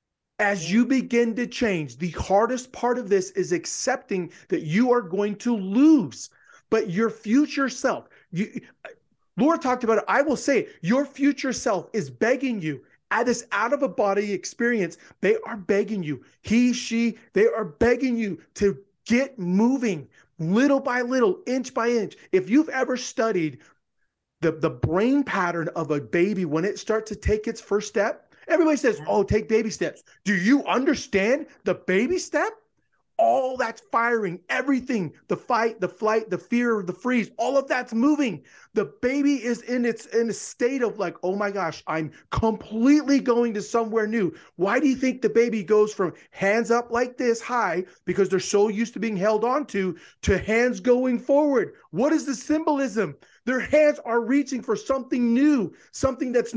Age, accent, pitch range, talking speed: 30-49, American, 200-260 Hz, 175 wpm